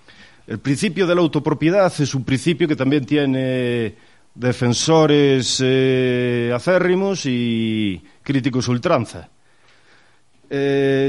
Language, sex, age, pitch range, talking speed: Spanish, male, 40-59, 120-155 Hz, 95 wpm